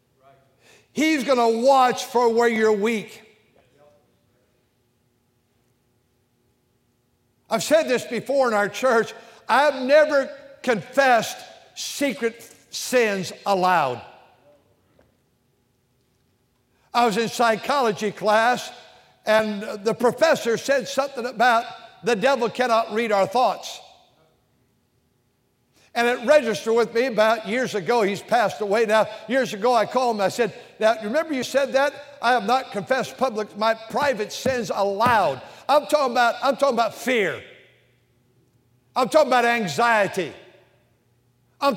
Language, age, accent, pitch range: English, 60-79, American, 200-270 Hz